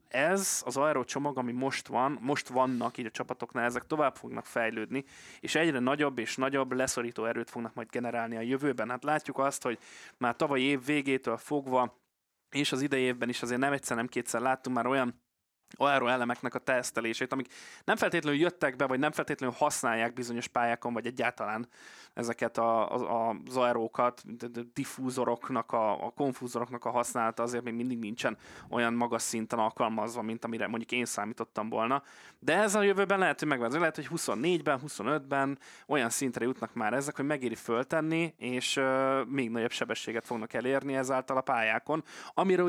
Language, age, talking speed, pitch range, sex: Hungarian, 20-39, 170 wpm, 120-140 Hz, male